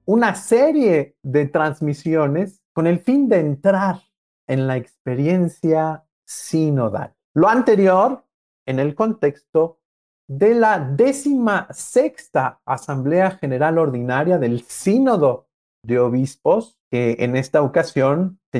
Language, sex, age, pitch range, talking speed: Spanish, male, 50-69, 130-195 Hz, 105 wpm